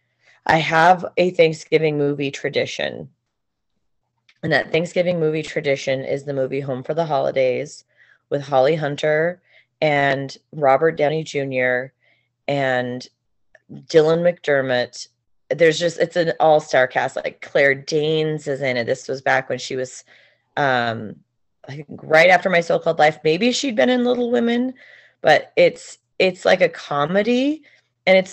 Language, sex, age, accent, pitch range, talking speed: English, female, 30-49, American, 135-175 Hz, 140 wpm